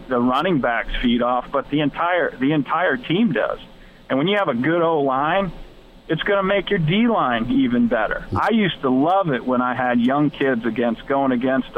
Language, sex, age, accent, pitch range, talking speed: English, male, 50-69, American, 130-175 Hz, 210 wpm